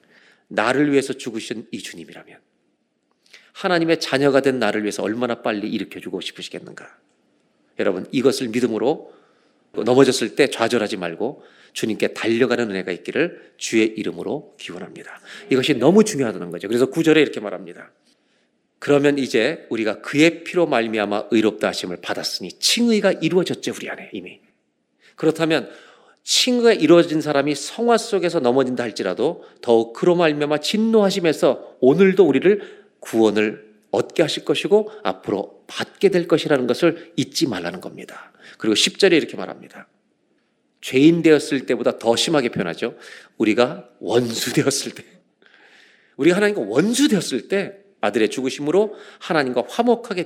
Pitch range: 120-190 Hz